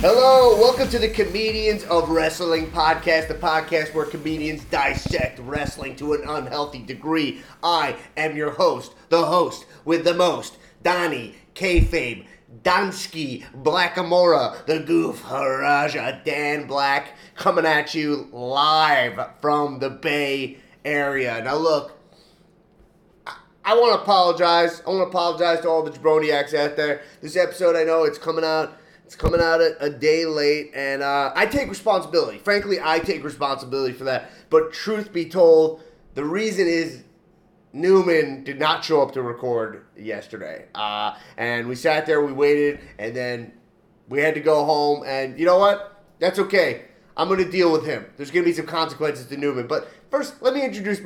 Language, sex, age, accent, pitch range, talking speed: English, male, 30-49, American, 145-180 Hz, 165 wpm